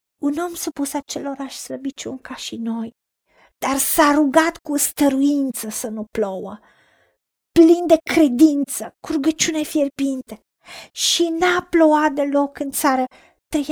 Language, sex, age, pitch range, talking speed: Romanian, female, 40-59, 255-300 Hz, 120 wpm